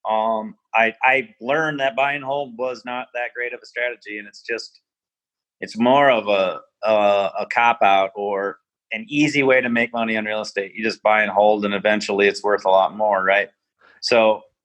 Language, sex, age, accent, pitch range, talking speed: English, male, 30-49, American, 110-135 Hz, 205 wpm